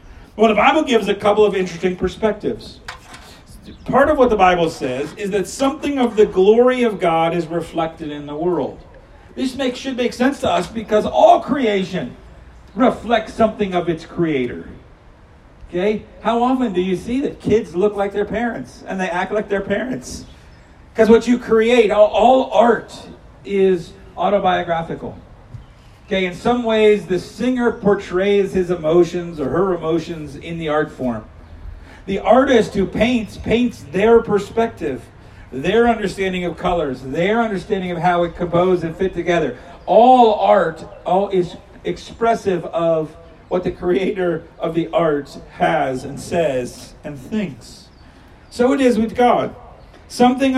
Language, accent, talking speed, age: English, American, 150 wpm, 50-69